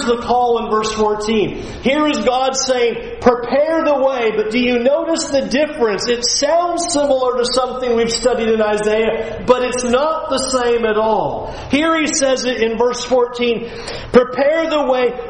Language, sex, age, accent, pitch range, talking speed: English, male, 40-59, American, 230-285 Hz, 175 wpm